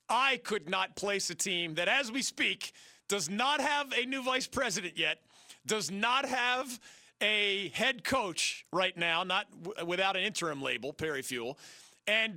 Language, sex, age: English, male, 40-59